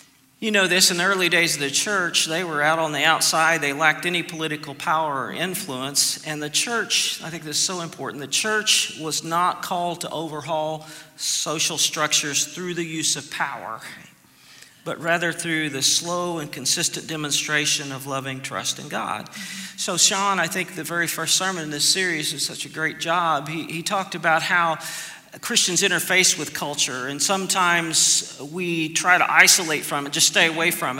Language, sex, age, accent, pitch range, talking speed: English, male, 40-59, American, 150-180 Hz, 185 wpm